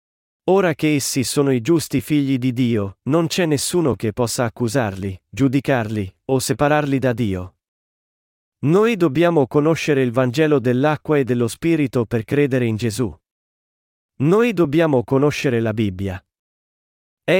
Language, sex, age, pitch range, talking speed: Italian, male, 40-59, 120-155 Hz, 135 wpm